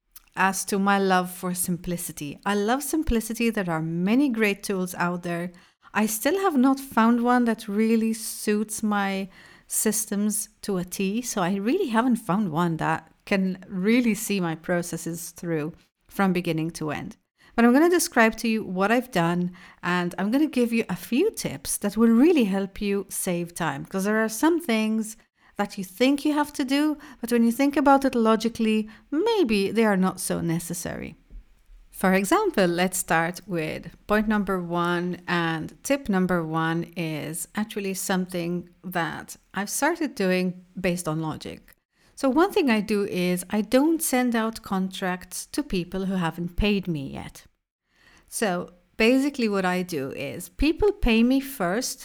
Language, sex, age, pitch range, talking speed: English, female, 40-59, 180-230 Hz, 170 wpm